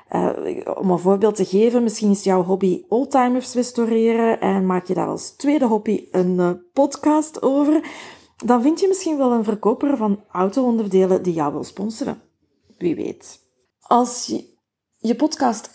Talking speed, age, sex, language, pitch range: 160 wpm, 30-49, female, Dutch, 195-245 Hz